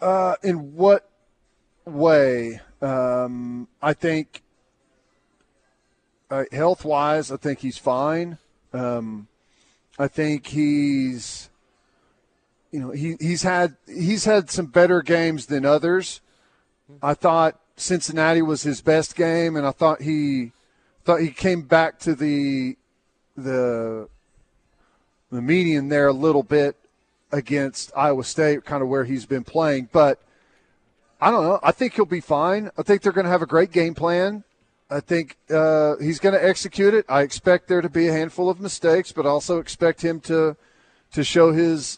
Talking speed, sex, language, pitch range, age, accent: 155 wpm, male, English, 140-170 Hz, 40-59, American